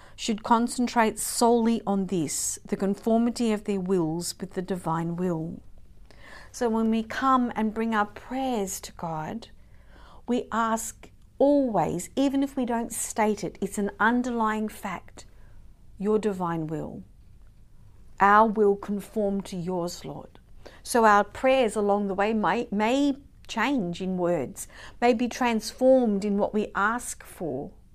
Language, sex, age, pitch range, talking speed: English, female, 50-69, 175-225 Hz, 140 wpm